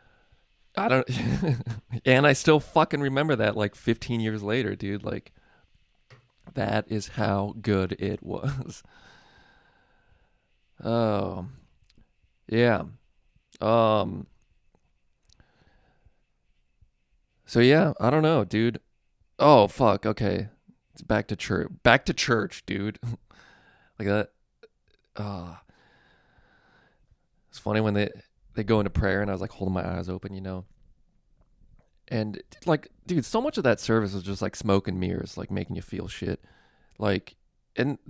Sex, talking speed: male, 130 wpm